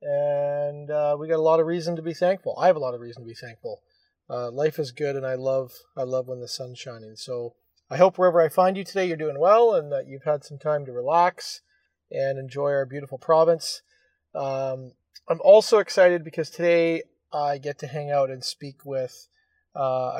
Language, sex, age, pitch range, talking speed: English, male, 30-49, 135-170 Hz, 215 wpm